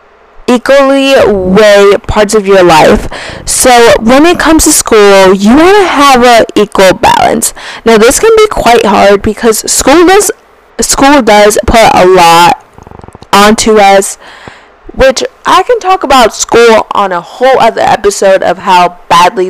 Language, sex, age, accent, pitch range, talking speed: English, female, 20-39, American, 195-265 Hz, 150 wpm